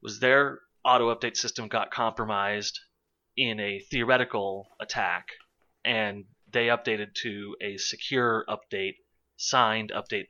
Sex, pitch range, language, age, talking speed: male, 100-135 Hz, English, 30-49, 110 wpm